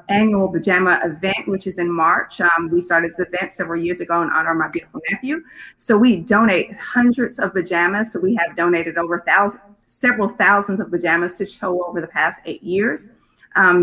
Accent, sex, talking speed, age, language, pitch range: American, female, 195 wpm, 30-49, English, 175-215 Hz